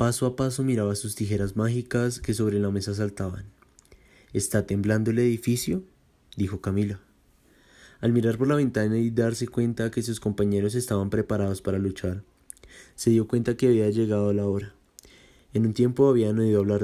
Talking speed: 170 wpm